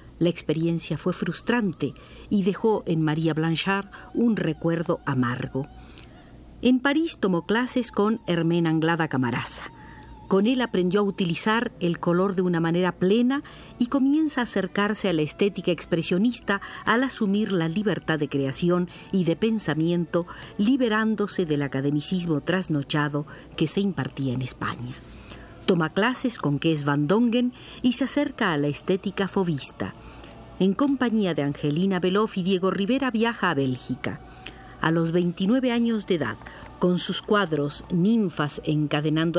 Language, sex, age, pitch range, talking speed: Spanish, female, 50-69, 155-220 Hz, 140 wpm